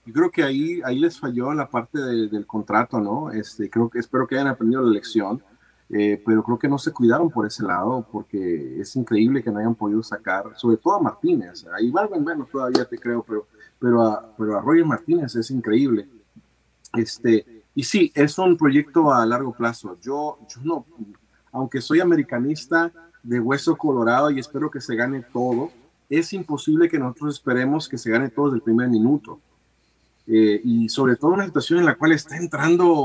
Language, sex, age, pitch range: Spanish, male, 40-59, 115-165 Hz